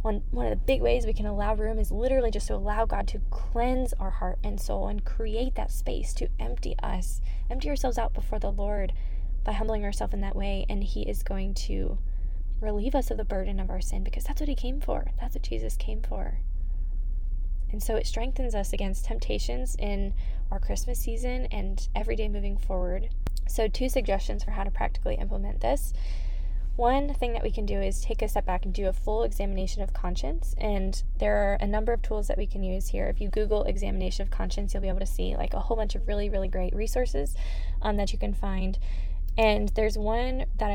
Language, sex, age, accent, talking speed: English, female, 10-29, American, 220 wpm